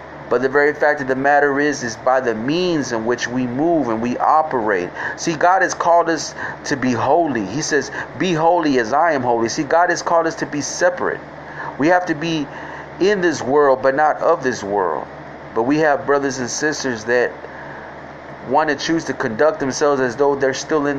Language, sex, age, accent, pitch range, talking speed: English, male, 40-59, American, 130-165 Hz, 210 wpm